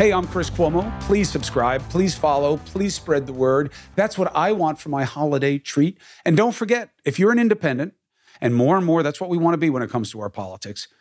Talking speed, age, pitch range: 235 wpm, 40-59, 115-160 Hz